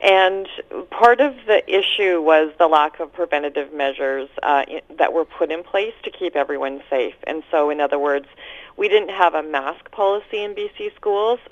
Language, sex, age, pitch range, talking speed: English, female, 40-59, 150-190 Hz, 180 wpm